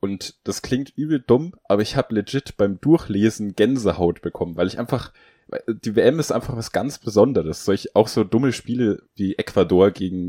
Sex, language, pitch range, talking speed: male, German, 85-105 Hz, 185 wpm